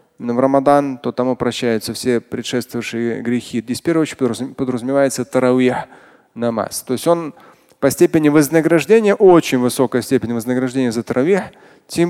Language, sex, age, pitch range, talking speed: Russian, male, 20-39, 125-165 Hz, 130 wpm